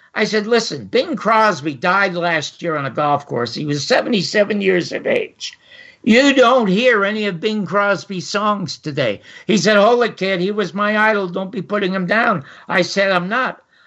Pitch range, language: 175-225 Hz, English